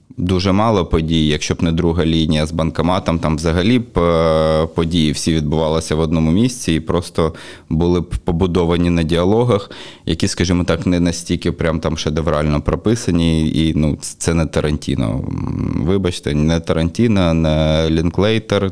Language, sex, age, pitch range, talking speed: Ukrainian, male, 20-39, 80-90 Hz, 145 wpm